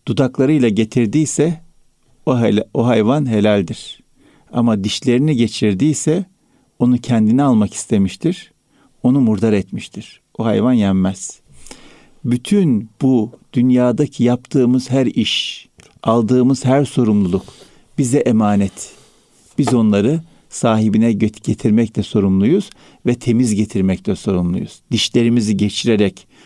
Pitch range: 105-125 Hz